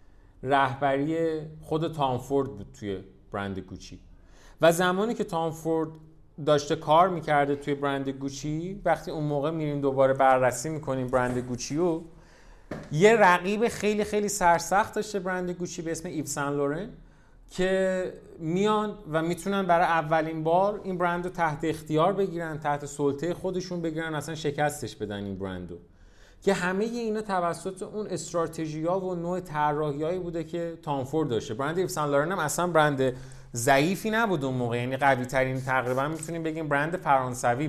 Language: Persian